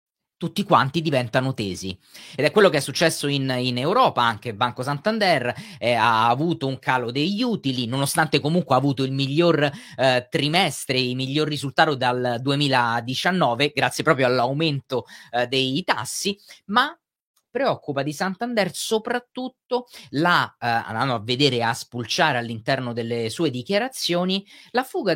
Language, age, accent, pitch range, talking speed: Italian, 30-49, native, 130-195 Hz, 140 wpm